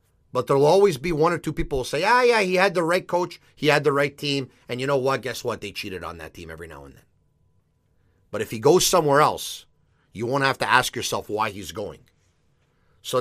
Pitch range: 135-200 Hz